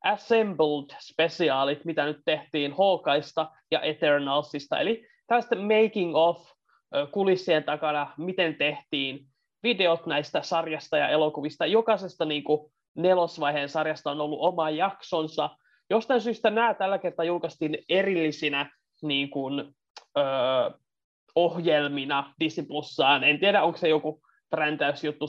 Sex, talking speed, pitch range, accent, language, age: male, 110 wpm, 150-190 Hz, native, Finnish, 20-39